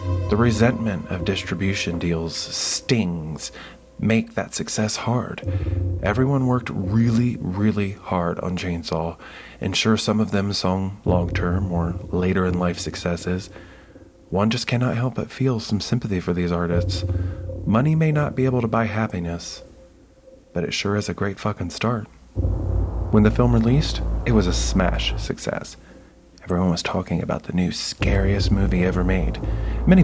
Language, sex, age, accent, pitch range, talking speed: English, male, 30-49, American, 90-110 Hz, 150 wpm